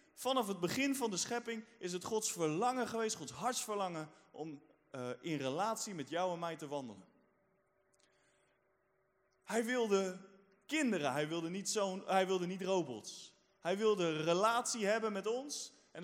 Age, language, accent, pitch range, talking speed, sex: 20-39, Dutch, Dutch, 165-225 Hz, 155 wpm, male